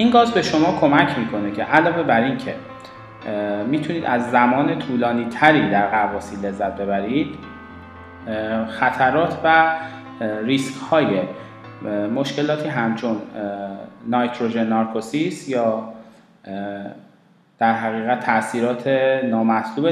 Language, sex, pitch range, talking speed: Persian, male, 110-145 Hz, 95 wpm